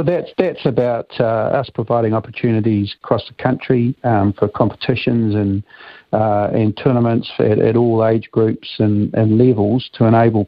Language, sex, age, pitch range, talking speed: English, male, 50-69, 110-120 Hz, 160 wpm